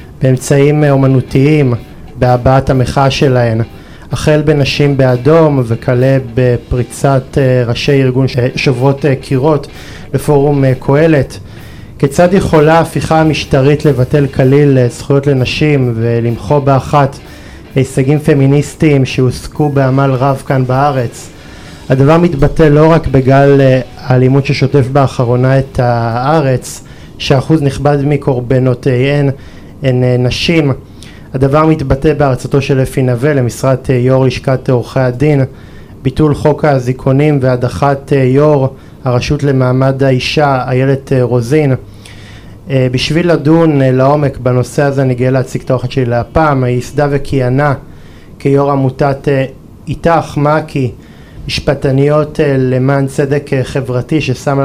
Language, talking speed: Hebrew, 105 wpm